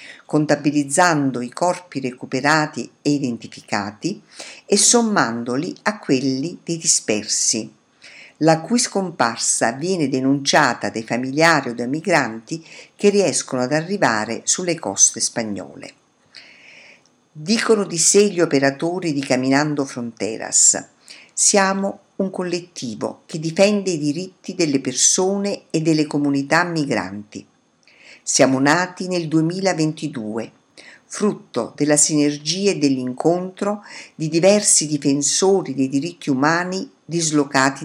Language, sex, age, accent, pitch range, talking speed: Italian, female, 50-69, native, 135-180 Hz, 105 wpm